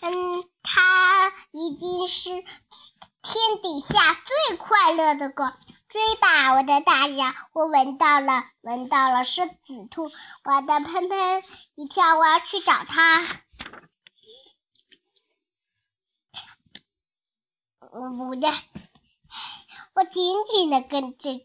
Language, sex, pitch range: Chinese, male, 280-370 Hz